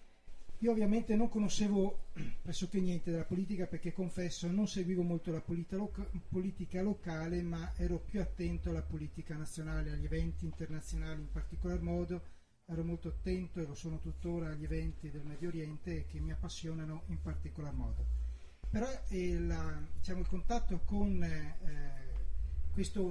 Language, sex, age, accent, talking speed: Italian, male, 40-59, native, 145 wpm